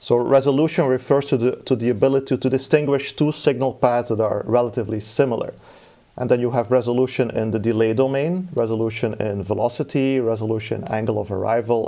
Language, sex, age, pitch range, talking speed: English, male, 40-59, 110-135 Hz, 170 wpm